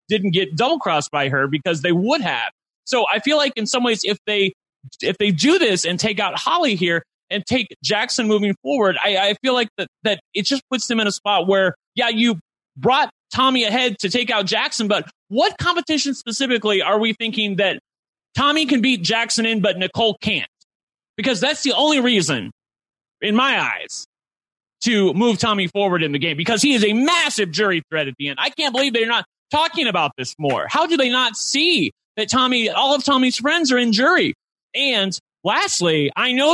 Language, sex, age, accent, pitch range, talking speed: English, male, 30-49, American, 170-245 Hz, 200 wpm